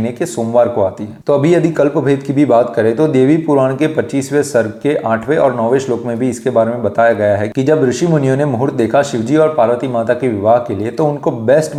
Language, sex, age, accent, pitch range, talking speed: Hindi, male, 30-49, native, 115-155 Hz, 255 wpm